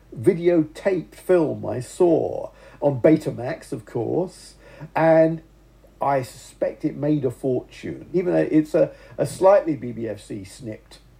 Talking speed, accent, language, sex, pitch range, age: 130 wpm, British, English, male, 120-155 Hz, 50-69